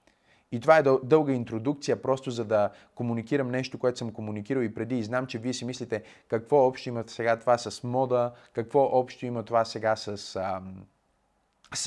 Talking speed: 175 wpm